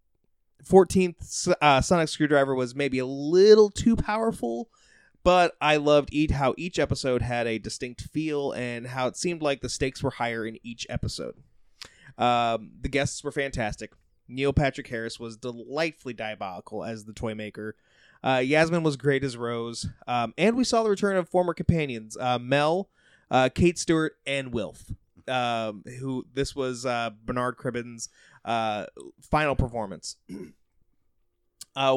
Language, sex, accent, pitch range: English, male, American, 115-150 Hz